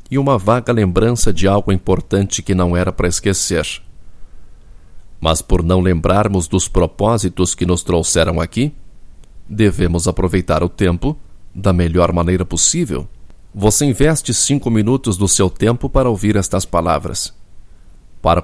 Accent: Brazilian